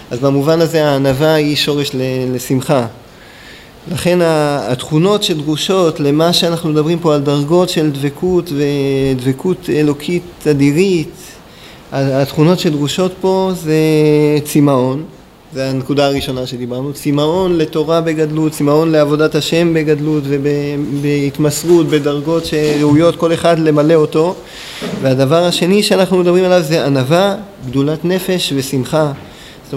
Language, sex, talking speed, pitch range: Hebrew, male, 110 wpm, 140-170 Hz